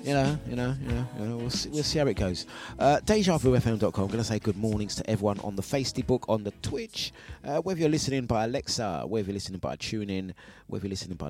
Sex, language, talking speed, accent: male, English, 245 wpm, British